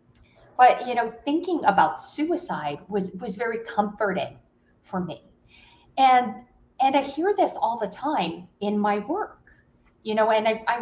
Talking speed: 155 wpm